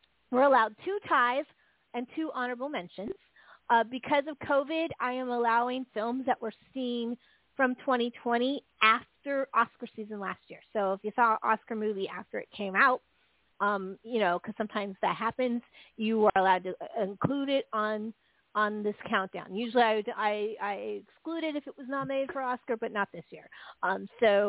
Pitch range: 220-275 Hz